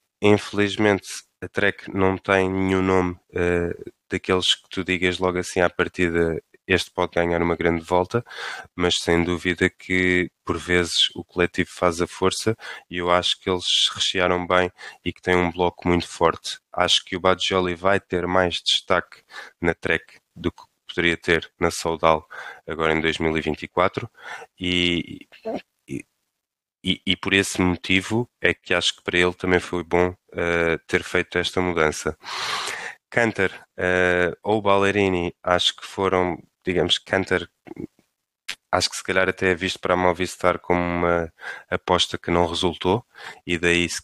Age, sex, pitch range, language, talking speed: 20-39, male, 85-95 Hz, Portuguese, 155 wpm